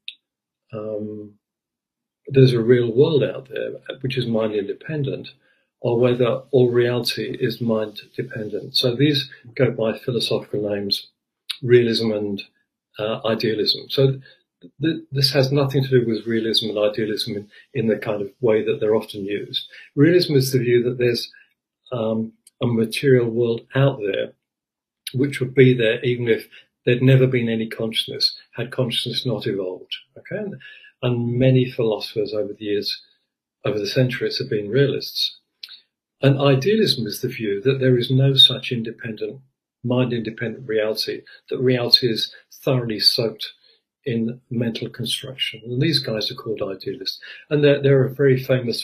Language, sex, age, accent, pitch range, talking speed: English, male, 50-69, British, 110-135 Hz, 150 wpm